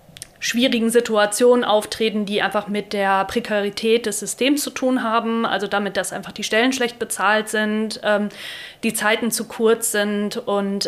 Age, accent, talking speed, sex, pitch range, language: 30-49, German, 160 wpm, female, 200-230 Hz, German